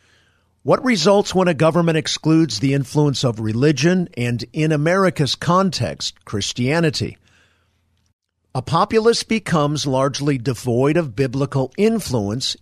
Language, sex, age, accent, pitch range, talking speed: English, male, 50-69, American, 115-160 Hz, 110 wpm